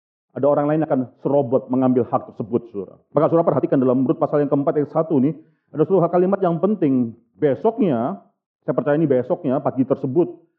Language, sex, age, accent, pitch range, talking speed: Indonesian, male, 40-59, native, 145-185 Hz, 180 wpm